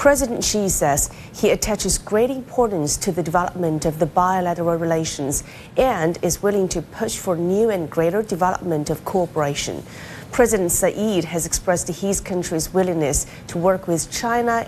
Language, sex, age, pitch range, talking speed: English, female, 30-49, 165-195 Hz, 150 wpm